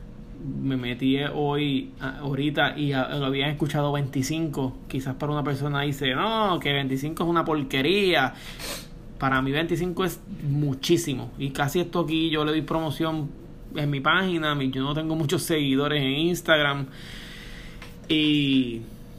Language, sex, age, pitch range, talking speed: Spanish, male, 20-39, 135-165 Hz, 140 wpm